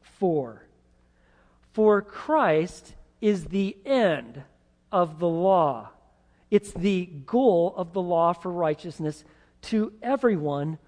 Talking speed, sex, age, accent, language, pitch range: 100 wpm, male, 40-59, American, English, 170-240 Hz